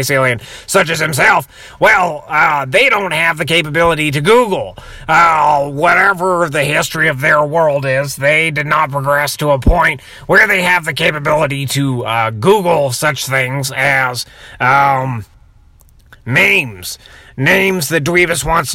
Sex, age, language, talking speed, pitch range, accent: male, 30-49, English, 140 wpm, 140-180 Hz, American